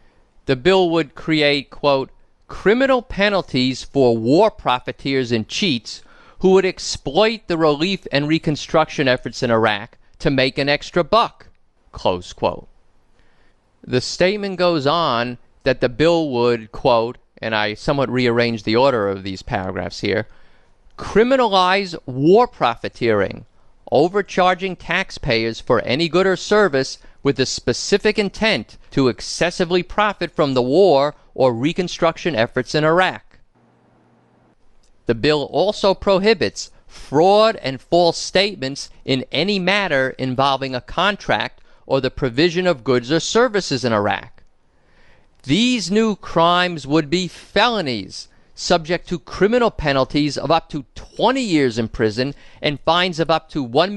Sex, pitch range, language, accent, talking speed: male, 130-185 Hz, English, American, 130 wpm